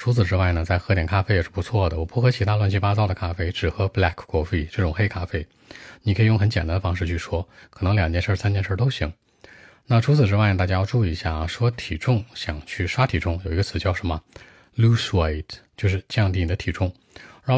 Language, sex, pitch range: Chinese, male, 90-110 Hz